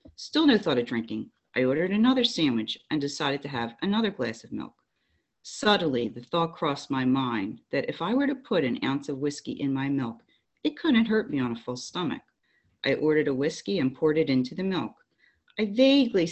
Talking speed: 205 wpm